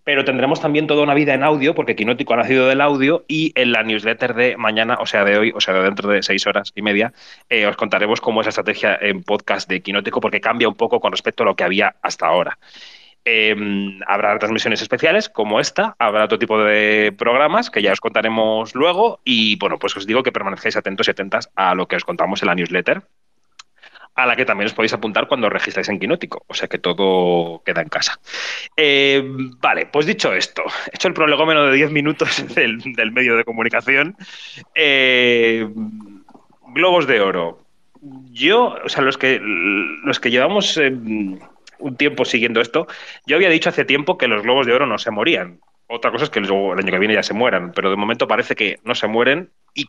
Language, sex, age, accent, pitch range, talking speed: Spanish, male, 30-49, Spanish, 105-145 Hz, 210 wpm